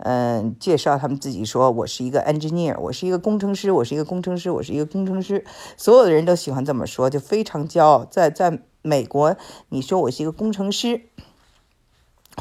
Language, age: Chinese, 50-69